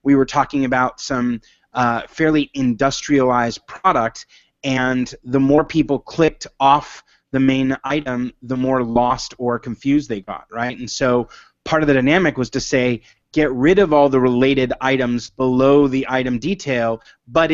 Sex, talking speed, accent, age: male, 160 wpm, American, 20-39